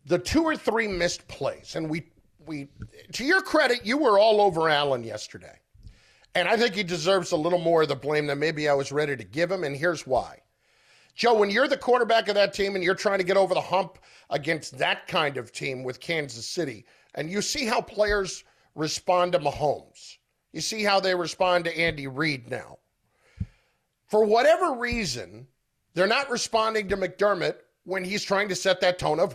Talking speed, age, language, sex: 200 wpm, 40-59, English, male